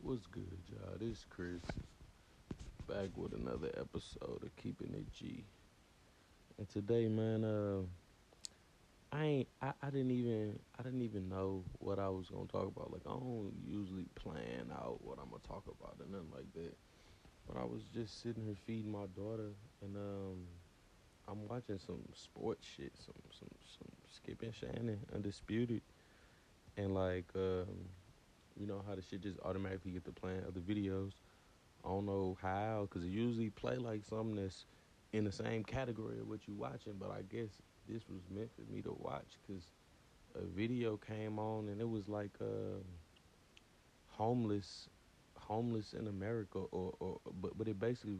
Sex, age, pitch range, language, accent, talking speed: male, 30-49, 95-110 Hz, English, American, 170 wpm